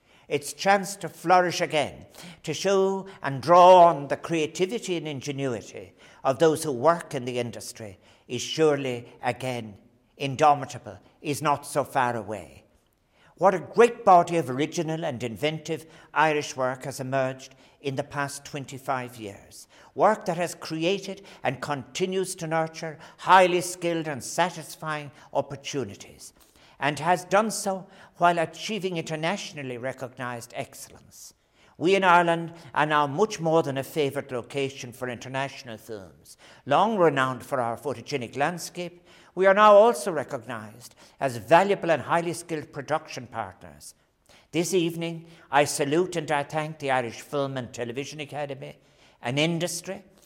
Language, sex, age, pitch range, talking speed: English, male, 60-79, 130-170 Hz, 140 wpm